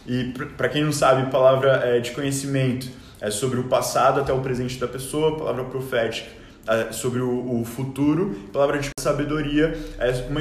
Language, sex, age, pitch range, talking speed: Portuguese, male, 20-39, 125-155 Hz, 160 wpm